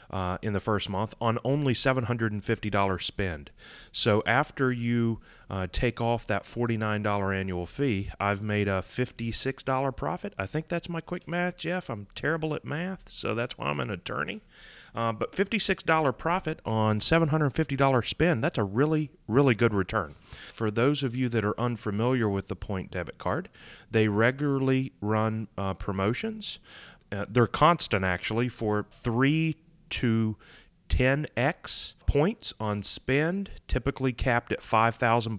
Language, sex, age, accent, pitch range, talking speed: English, male, 30-49, American, 100-130 Hz, 145 wpm